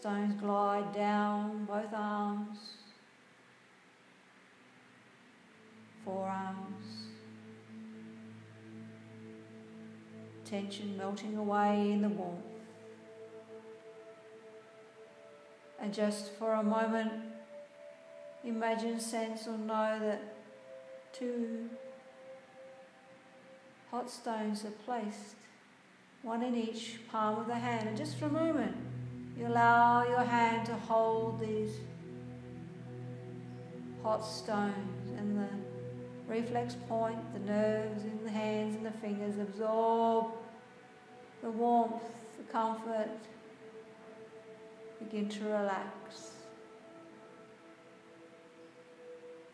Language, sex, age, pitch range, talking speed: English, female, 50-69, 165-225 Hz, 80 wpm